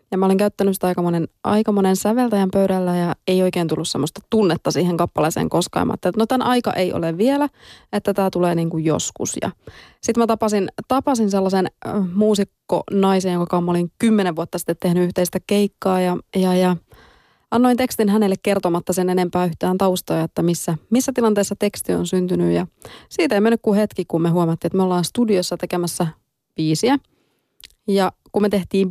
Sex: female